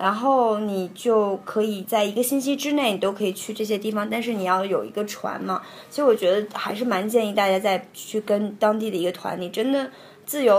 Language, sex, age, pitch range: Chinese, female, 20-39, 195-230 Hz